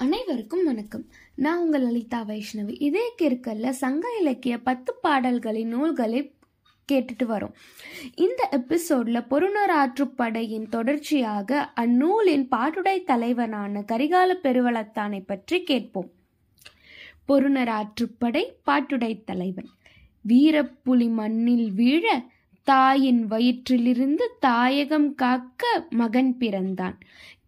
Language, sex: Tamil, female